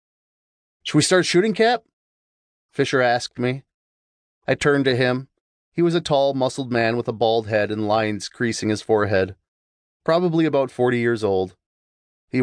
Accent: American